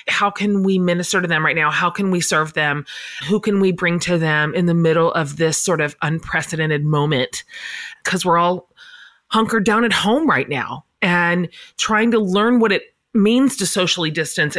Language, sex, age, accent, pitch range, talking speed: English, female, 30-49, American, 165-220 Hz, 195 wpm